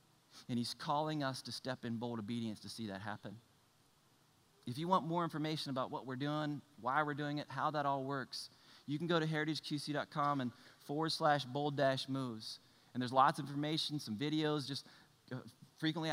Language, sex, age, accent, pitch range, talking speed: English, male, 30-49, American, 130-170 Hz, 185 wpm